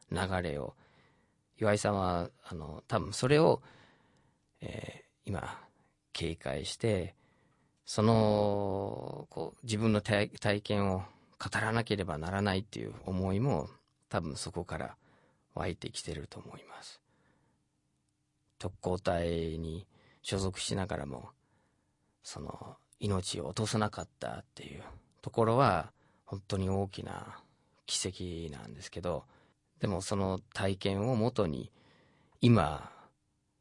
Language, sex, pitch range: Japanese, male, 90-110 Hz